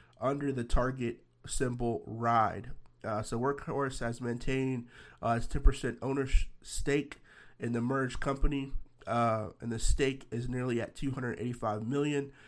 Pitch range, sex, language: 115-130 Hz, male, English